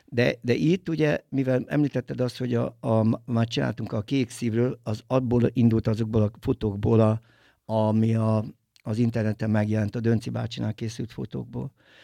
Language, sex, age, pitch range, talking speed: Hungarian, male, 60-79, 115-135 Hz, 160 wpm